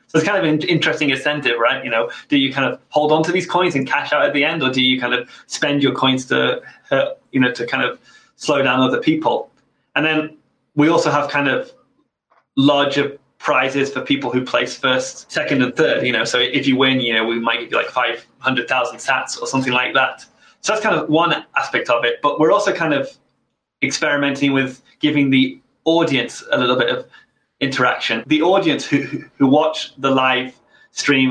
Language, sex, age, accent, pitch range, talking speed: English, male, 20-39, British, 130-155 Hz, 215 wpm